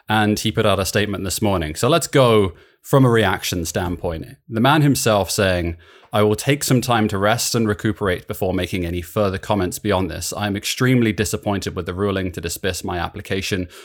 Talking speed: 195 wpm